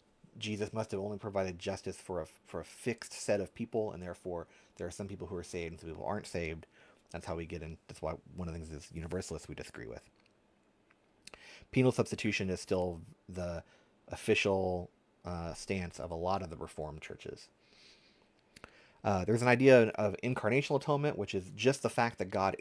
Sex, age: male, 30-49